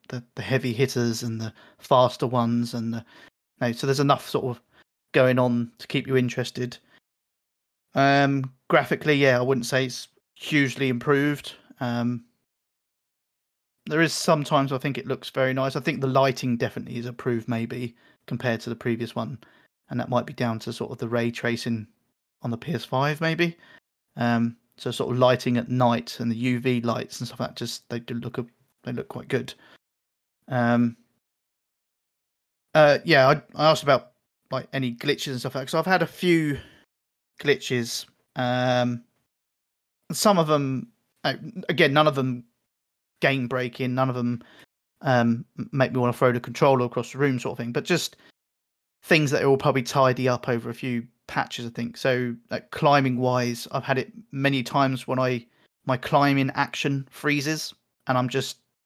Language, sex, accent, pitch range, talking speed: English, male, British, 120-135 Hz, 175 wpm